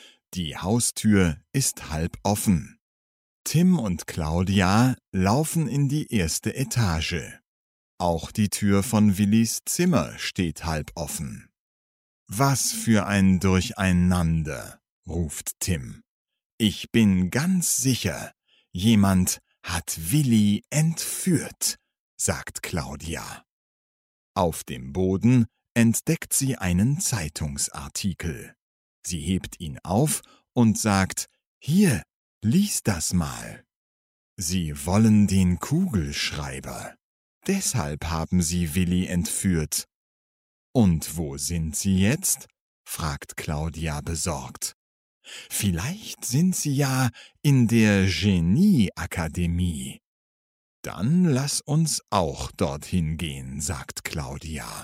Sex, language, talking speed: male, Slovak, 95 wpm